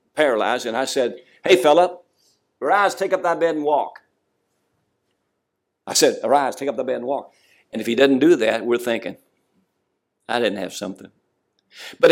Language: English